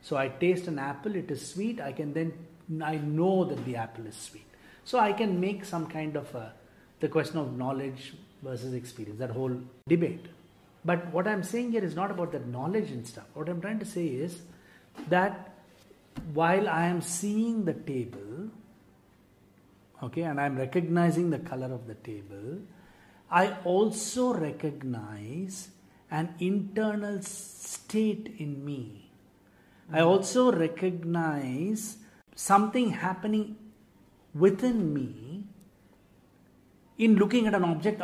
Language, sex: English, male